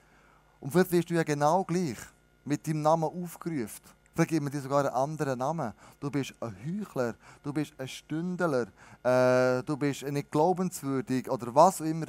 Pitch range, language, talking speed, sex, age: 130-180 Hz, German, 175 wpm, male, 20-39